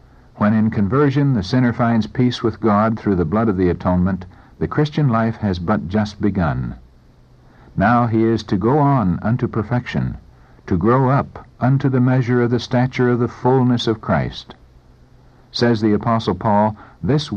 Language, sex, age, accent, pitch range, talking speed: English, male, 60-79, American, 100-130 Hz, 170 wpm